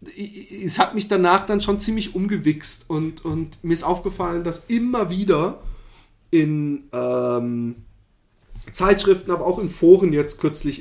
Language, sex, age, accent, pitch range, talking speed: German, male, 30-49, German, 135-185 Hz, 140 wpm